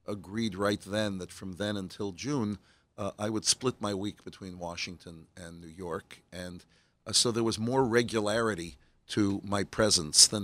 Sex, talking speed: male, 170 wpm